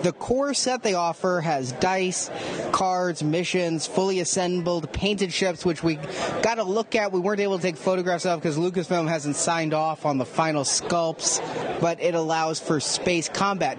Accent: American